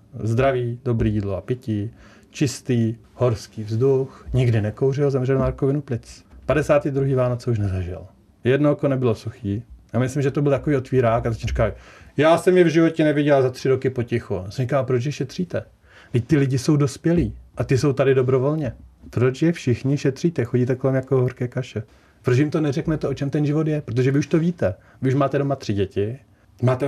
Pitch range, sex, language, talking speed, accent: 115-145 Hz, male, Czech, 190 wpm, native